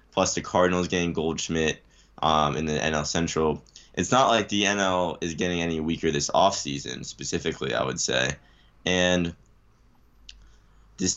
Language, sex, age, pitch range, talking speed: English, male, 10-29, 75-95 Hz, 145 wpm